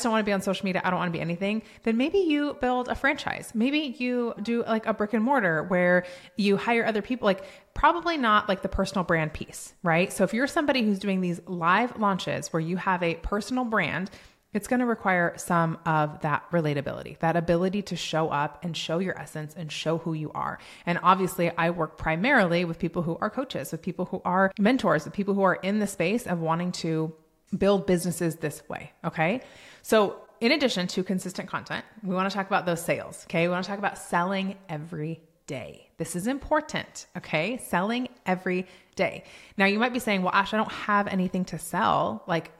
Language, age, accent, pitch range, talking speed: English, 20-39, American, 165-205 Hz, 215 wpm